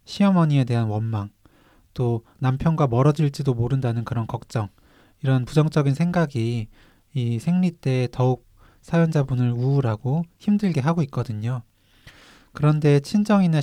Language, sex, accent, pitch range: Korean, male, native, 115-150 Hz